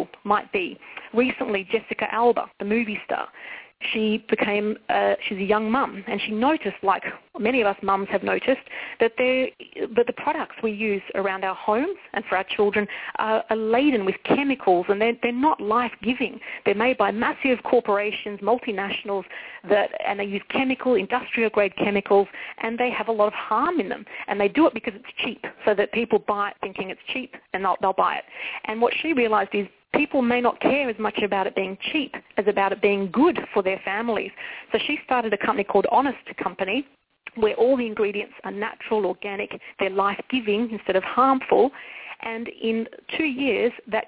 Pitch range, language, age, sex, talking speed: 205-250 Hz, English, 40-59, female, 195 wpm